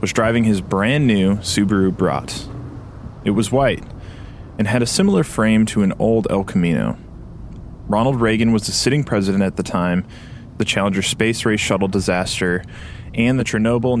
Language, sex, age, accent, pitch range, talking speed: English, male, 20-39, American, 95-120 Hz, 160 wpm